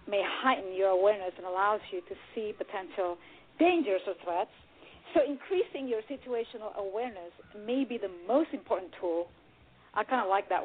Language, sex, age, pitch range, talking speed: English, female, 40-59, 190-280 Hz, 165 wpm